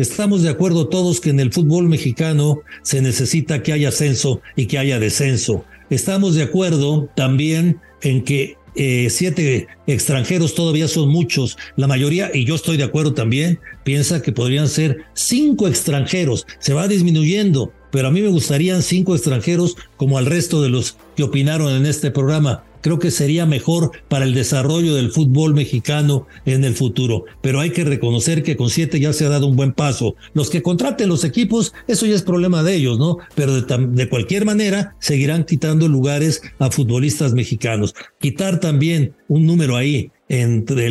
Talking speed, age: 175 wpm, 60-79